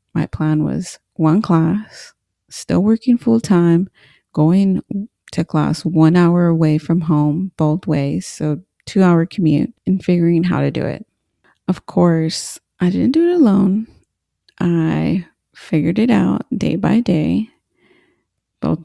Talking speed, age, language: 140 wpm, 30-49, English